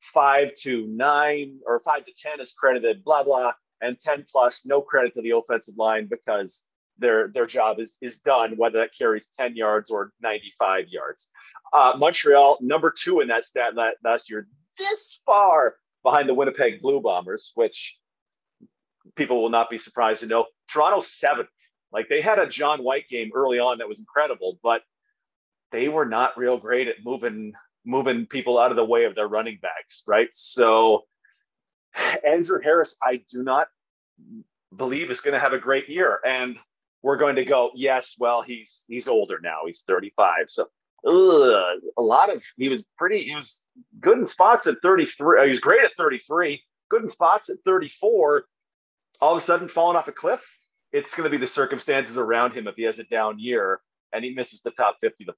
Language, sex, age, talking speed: English, male, 40-59, 185 wpm